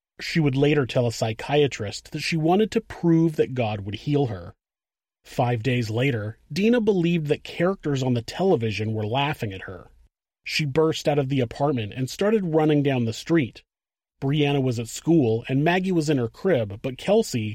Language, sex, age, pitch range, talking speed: English, male, 30-49, 115-160 Hz, 185 wpm